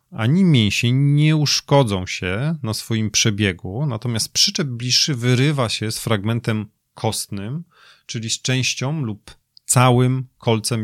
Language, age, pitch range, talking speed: Polish, 30-49, 105-135 Hz, 120 wpm